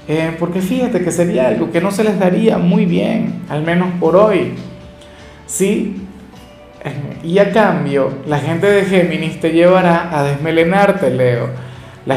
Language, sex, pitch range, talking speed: Spanish, male, 135-175 Hz, 155 wpm